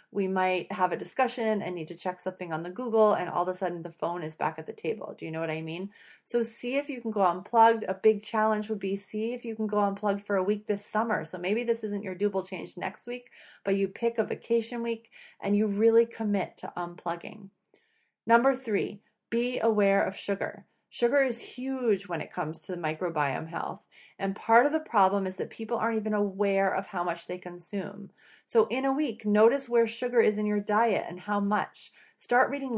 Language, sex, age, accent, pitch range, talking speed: English, female, 30-49, American, 195-230 Hz, 225 wpm